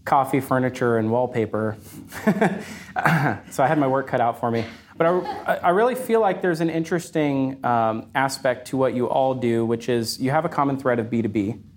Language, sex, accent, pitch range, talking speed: English, male, American, 115-140 Hz, 195 wpm